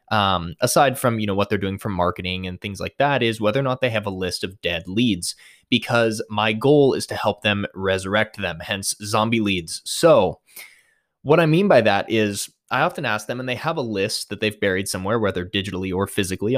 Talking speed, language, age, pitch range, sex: 220 wpm, English, 20-39, 95-120 Hz, male